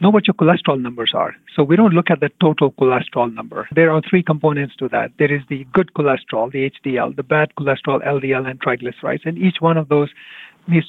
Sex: male